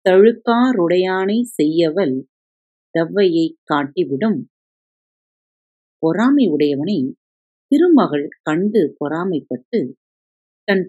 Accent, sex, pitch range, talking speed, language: native, female, 155-225 Hz, 55 wpm, Tamil